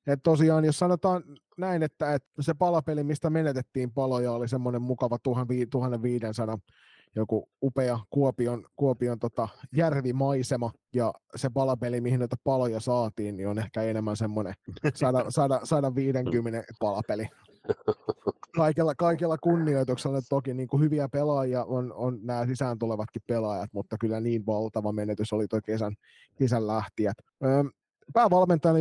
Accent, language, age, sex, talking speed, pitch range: native, Finnish, 20-39, male, 130 wpm, 115-145 Hz